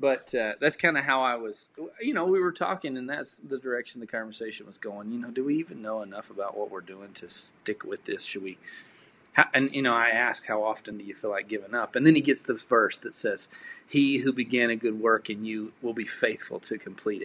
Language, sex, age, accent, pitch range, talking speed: English, male, 30-49, American, 110-135 Hz, 250 wpm